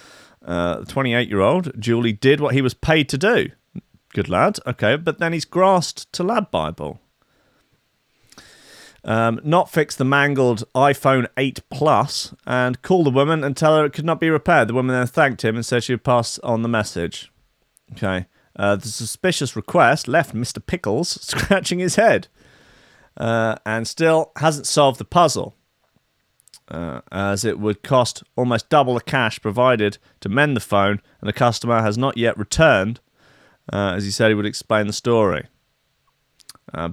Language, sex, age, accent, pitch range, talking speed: English, male, 30-49, British, 110-155 Hz, 170 wpm